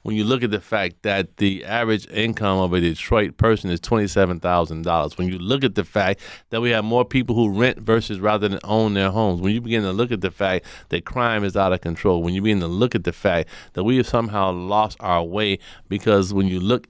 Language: English